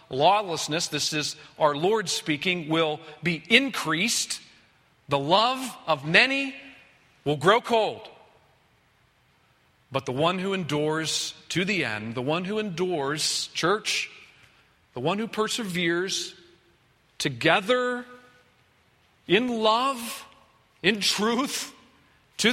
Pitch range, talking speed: 155-215 Hz, 105 wpm